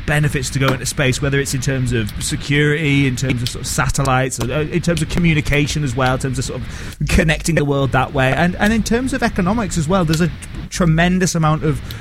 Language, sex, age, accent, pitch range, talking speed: English, male, 30-49, British, 125-160 Hz, 235 wpm